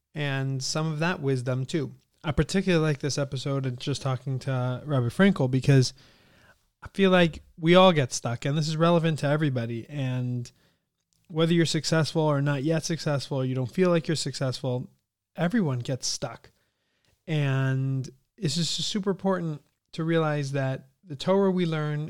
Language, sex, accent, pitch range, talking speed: English, male, American, 130-160 Hz, 165 wpm